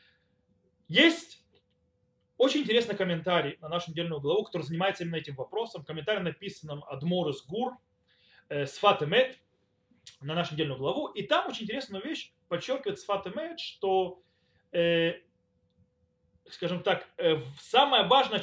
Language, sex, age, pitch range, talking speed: Russian, male, 30-49, 175-270 Hz, 120 wpm